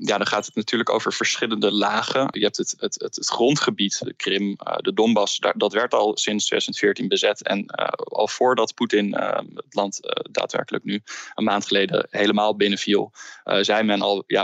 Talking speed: 190 wpm